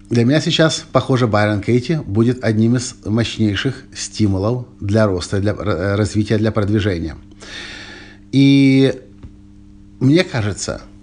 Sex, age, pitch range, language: male, 50-69, 100-130 Hz, Russian